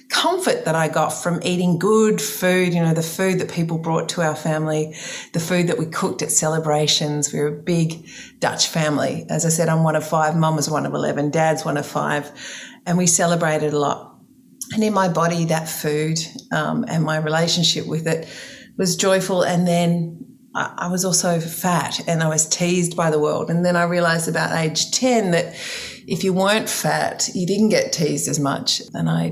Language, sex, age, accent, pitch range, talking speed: English, female, 40-59, Australian, 155-190 Hz, 205 wpm